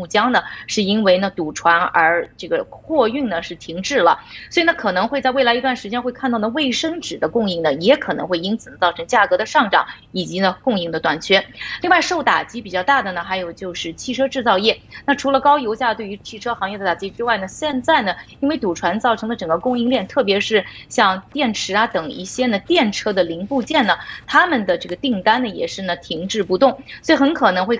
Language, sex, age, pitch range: Chinese, female, 20-39, 185-260 Hz